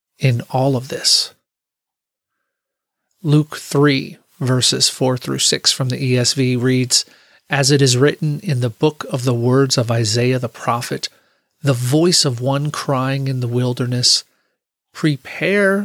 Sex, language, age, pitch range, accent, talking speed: male, English, 40-59, 125-140 Hz, American, 135 wpm